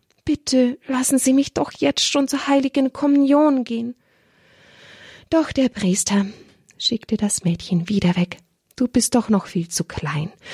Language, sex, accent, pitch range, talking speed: German, female, German, 180-265 Hz, 150 wpm